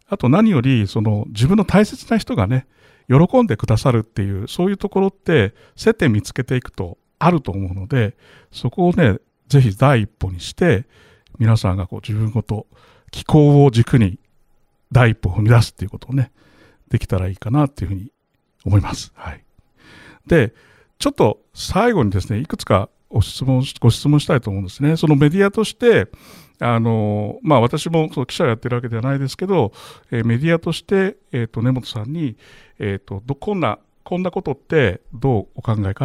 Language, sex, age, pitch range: Japanese, male, 60-79, 110-155 Hz